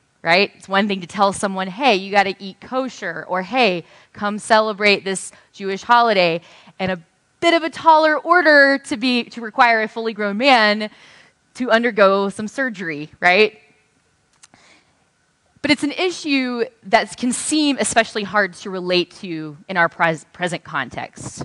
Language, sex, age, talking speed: English, female, 20-39, 155 wpm